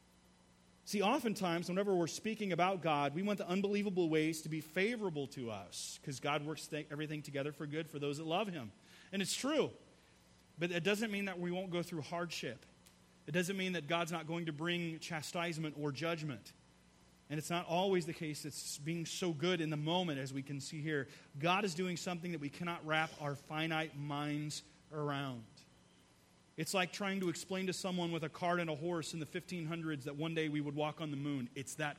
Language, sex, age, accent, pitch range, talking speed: English, male, 30-49, American, 150-185 Hz, 210 wpm